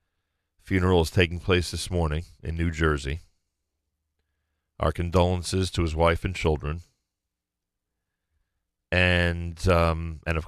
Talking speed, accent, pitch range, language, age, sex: 115 wpm, American, 80-90 Hz, English, 40-59, male